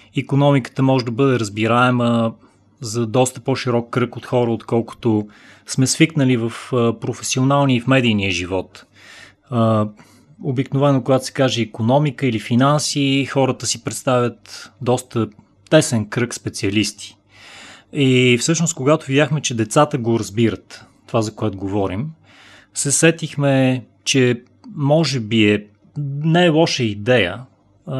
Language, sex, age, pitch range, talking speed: Bulgarian, male, 30-49, 115-145 Hz, 120 wpm